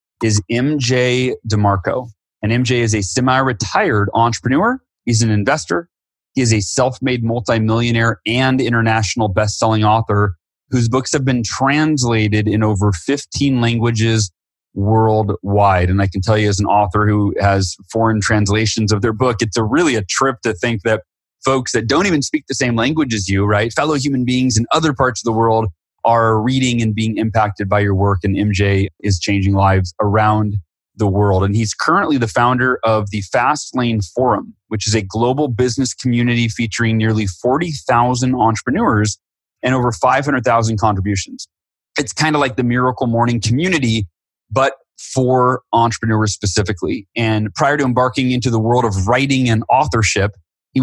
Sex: male